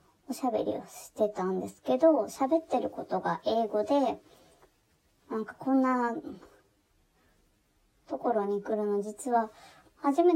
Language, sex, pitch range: Japanese, male, 200-285 Hz